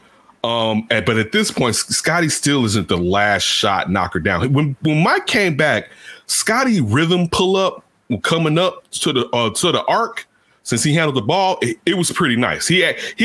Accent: American